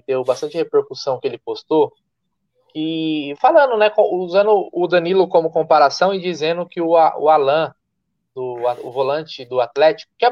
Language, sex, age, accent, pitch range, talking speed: Portuguese, male, 20-39, Brazilian, 160-220 Hz, 145 wpm